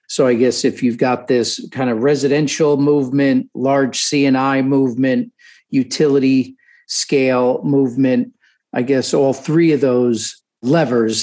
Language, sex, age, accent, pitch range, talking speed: English, male, 50-69, American, 115-140 Hz, 130 wpm